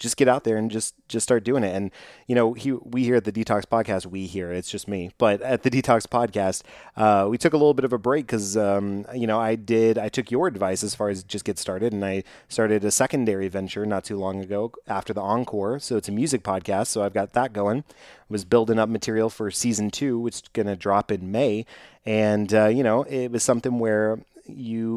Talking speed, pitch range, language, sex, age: 245 wpm, 100-115 Hz, English, male, 30-49